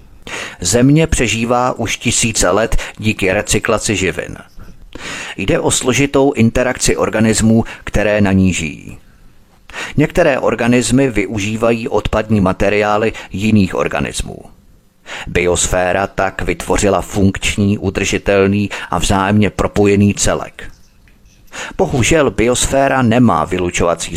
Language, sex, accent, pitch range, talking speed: Czech, male, native, 95-115 Hz, 90 wpm